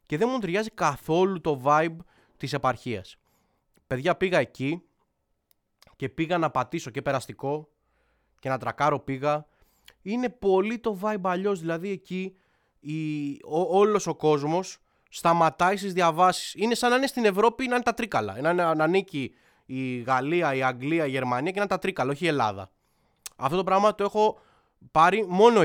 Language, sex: Greek, male